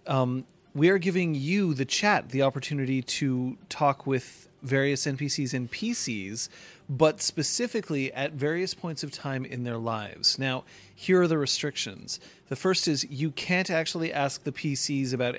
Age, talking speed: 30-49, 160 wpm